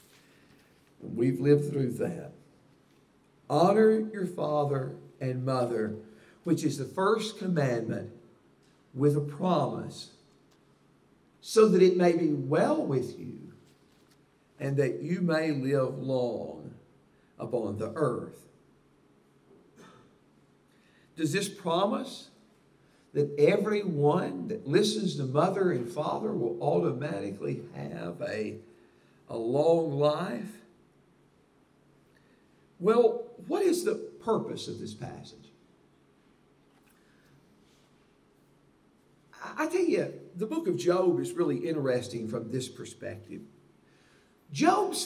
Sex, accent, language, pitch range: male, American, English, 145-220 Hz